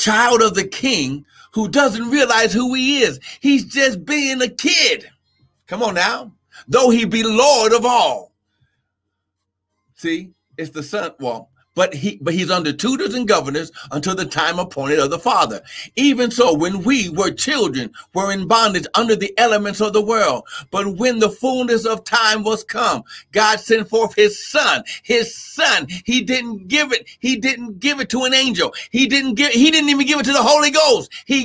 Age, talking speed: 60-79, 185 wpm